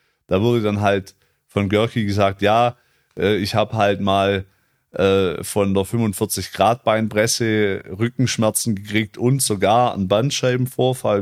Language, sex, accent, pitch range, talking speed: German, male, German, 100-115 Hz, 125 wpm